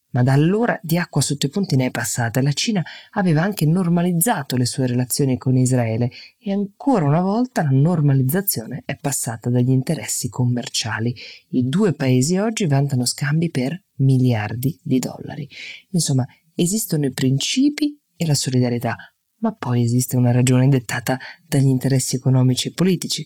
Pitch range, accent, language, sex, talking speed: 125-175 Hz, native, Italian, female, 155 wpm